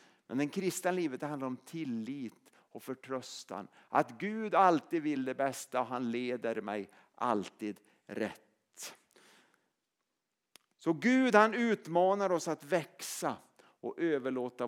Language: Swedish